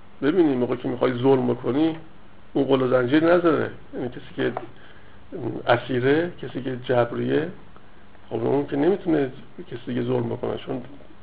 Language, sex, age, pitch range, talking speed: Persian, male, 60-79, 125-155 Hz, 135 wpm